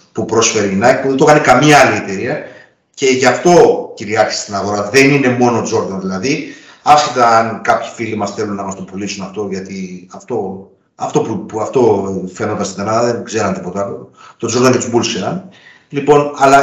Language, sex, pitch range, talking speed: Greek, male, 105-145 Hz, 190 wpm